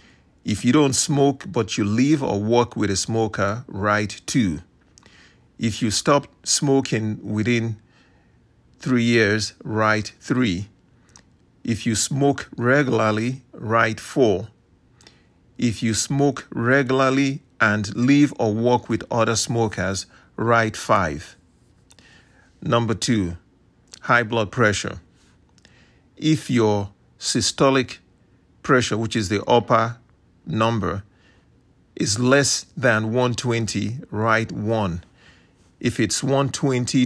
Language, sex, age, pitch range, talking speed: English, male, 50-69, 105-130 Hz, 105 wpm